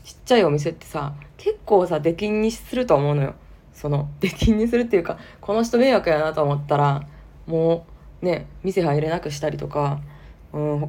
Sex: female